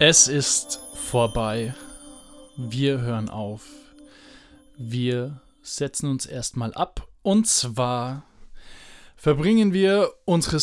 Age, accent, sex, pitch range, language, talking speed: 20-39, German, male, 125-155 Hz, German, 90 wpm